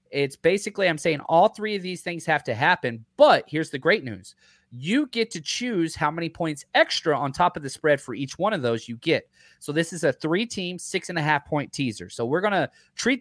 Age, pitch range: 30-49, 130-175 Hz